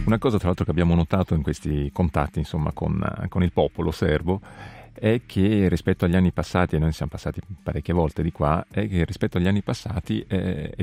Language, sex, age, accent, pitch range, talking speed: Italian, male, 40-59, native, 80-100 Hz, 210 wpm